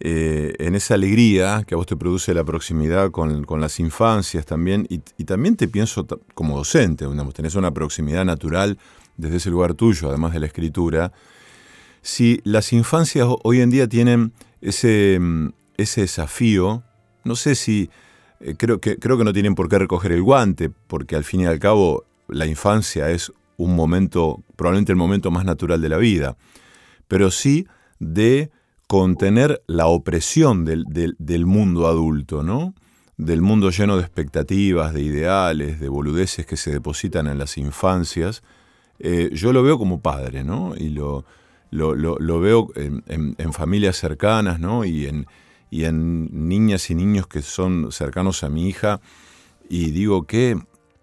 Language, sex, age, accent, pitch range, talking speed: Spanish, male, 40-59, Argentinian, 80-100 Hz, 165 wpm